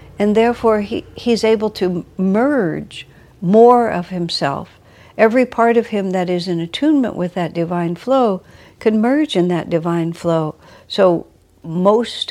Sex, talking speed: female, 145 wpm